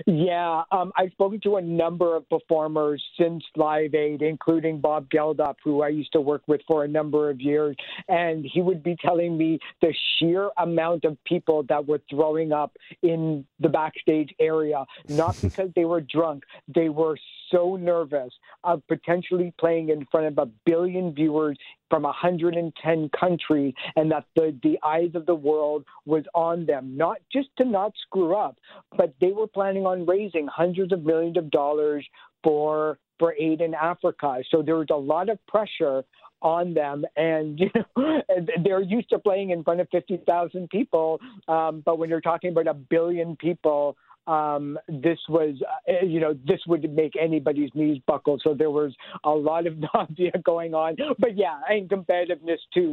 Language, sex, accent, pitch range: English, male, American, 150-175 Hz